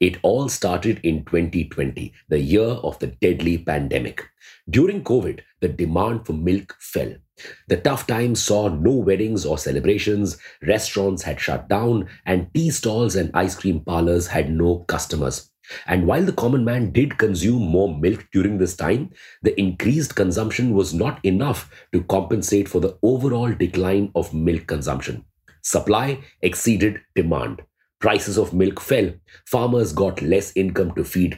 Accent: Indian